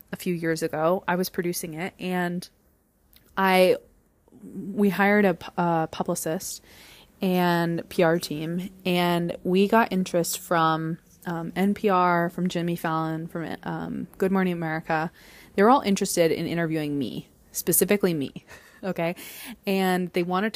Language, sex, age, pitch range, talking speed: English, female, 20-39, 165-195 Hz, 135 wpm